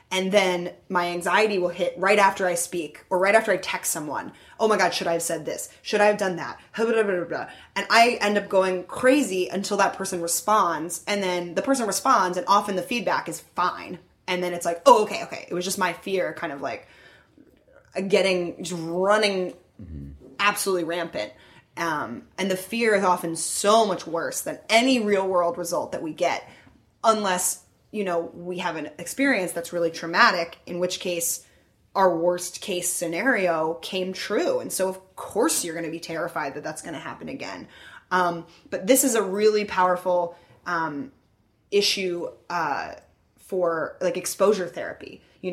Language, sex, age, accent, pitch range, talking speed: English, female, 20-39, American, 170-205 Hz, 180 wpm